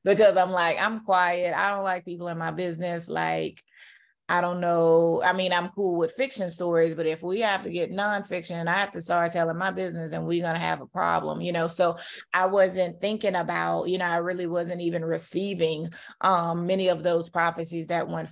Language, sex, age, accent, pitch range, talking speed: English, female, 30-49, American, 170-190 Hz, 215 wpm